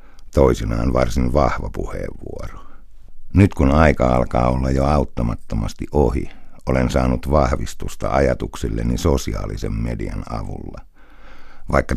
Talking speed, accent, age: 100 wpm, native, 60-79